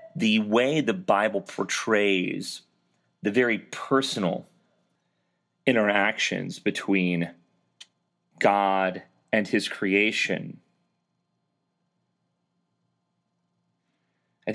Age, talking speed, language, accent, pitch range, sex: 30-49, 60 wpm, English, American, 95-135 Hz, male